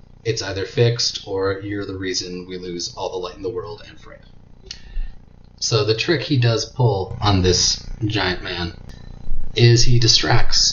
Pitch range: 95-120 Hz